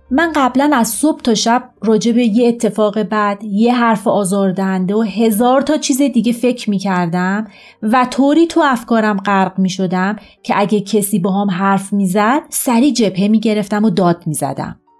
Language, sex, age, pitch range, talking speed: Persian, female, 30-49, 185-240 Hz, 160 wpm